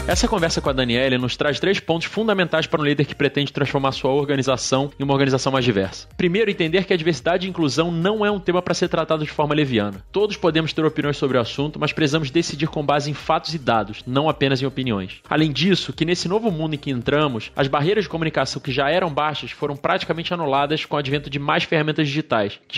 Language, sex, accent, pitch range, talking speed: Portuguese, male, Brazilian, 135-165 Hz, 235 wpm